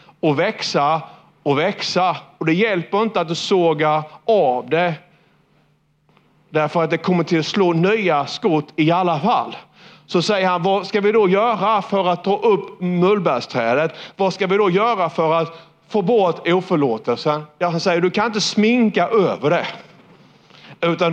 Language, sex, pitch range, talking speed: Swedish, male, 160-200 Hz, 165 wpm